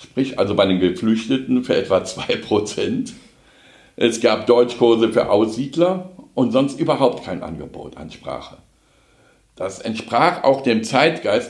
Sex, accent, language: male, German, German